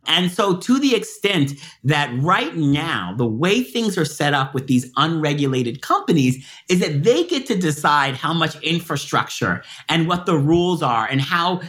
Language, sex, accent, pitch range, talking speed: English, male, American, 140-185 Hz, 175 wpm